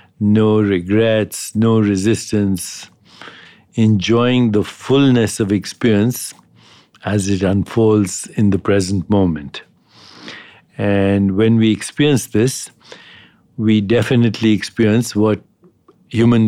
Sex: male